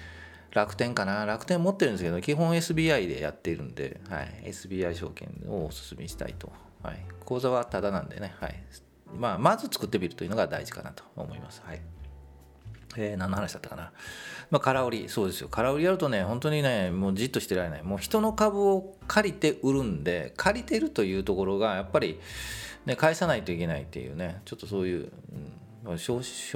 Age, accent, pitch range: 40-59, native, 85-130 Hz